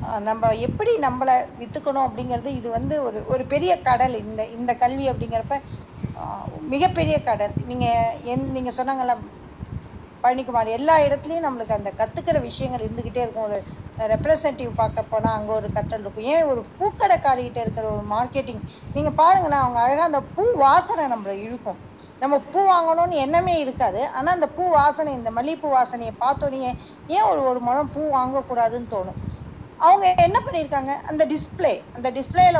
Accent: native